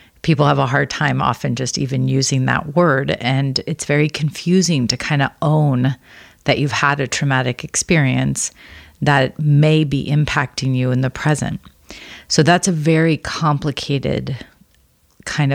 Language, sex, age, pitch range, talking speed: English, female, 30-49, 130-155 Hz, 150 wpm